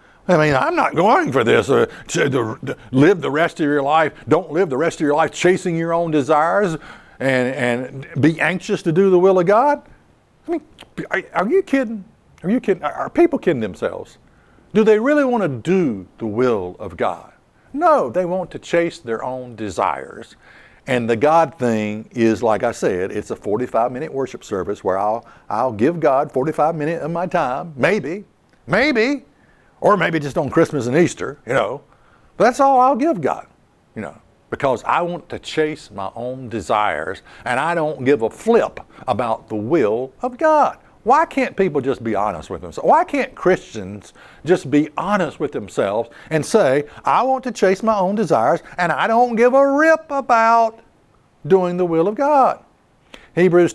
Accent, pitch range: American, 140-225 Hz